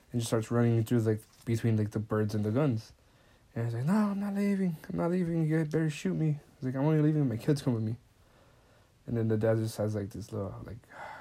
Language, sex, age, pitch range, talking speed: English, male, 20-39, 110-135 Hz, 270 wpm